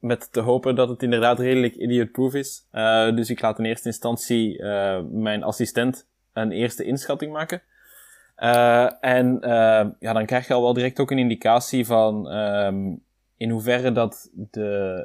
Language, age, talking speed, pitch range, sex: Dutch, 20-39, 170 wpm, 110-125 Hz, male